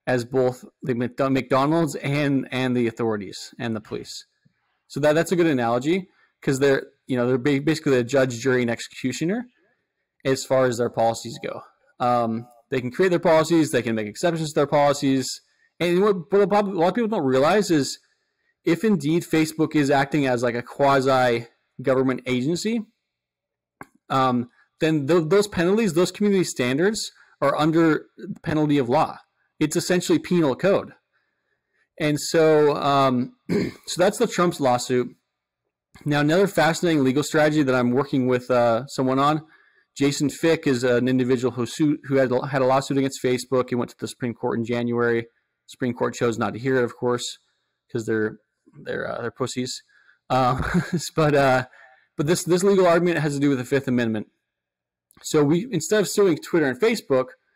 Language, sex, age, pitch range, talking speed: English, male, 20-39, 125-170 Hz, 170 wpm